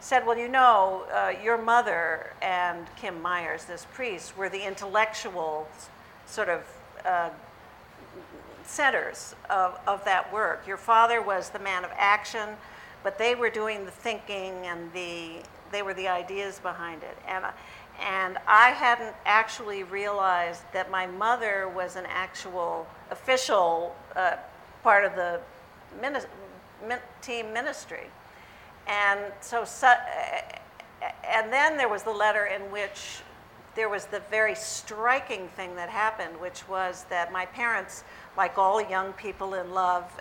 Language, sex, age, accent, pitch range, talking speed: English, female, 50-69, American, 180-220 Hz, 140 wpm